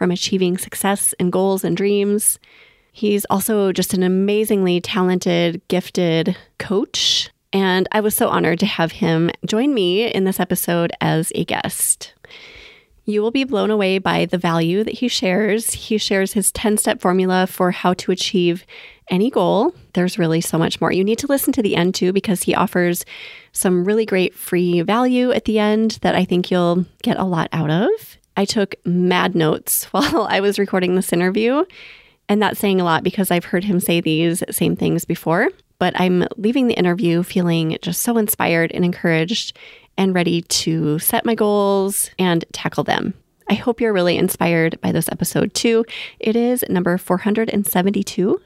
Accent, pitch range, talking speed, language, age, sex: American, 180-215 Hz, 175 wpm, English, 30-49, female